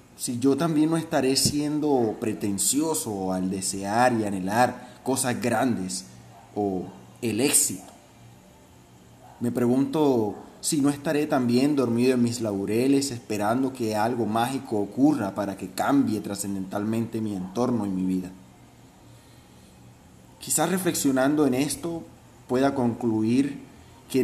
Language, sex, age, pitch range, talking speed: Spanish, male, 30-49, 100-140 Hz, 115 wpm